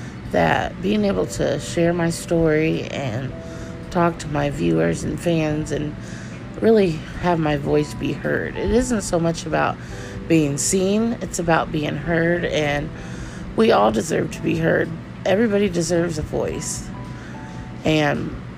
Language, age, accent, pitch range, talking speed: English, 30-49, American, 130-170 Hz, 140 wpm